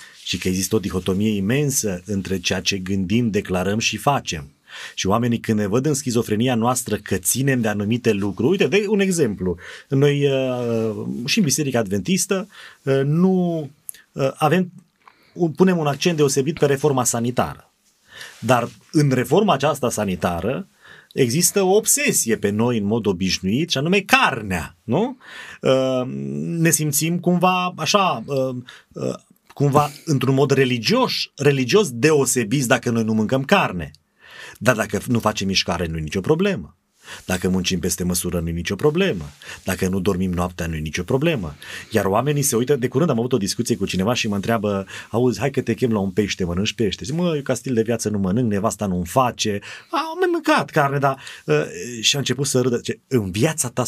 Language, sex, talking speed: Romanian, male, 170 wpm